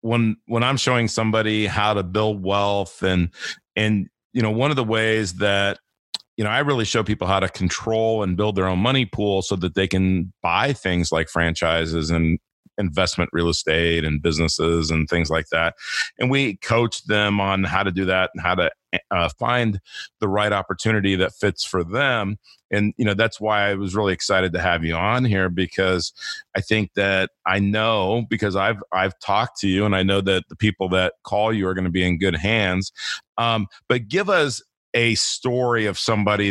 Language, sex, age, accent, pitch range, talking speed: English, male, 40-59, American, 95-115 Hz, 200 wpm